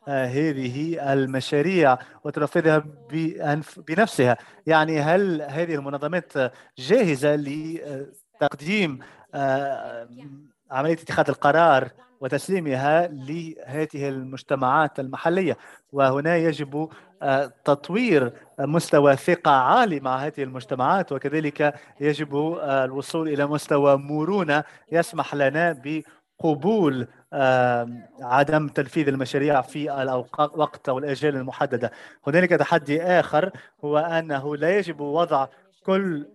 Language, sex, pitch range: English, male, 135-165 Hz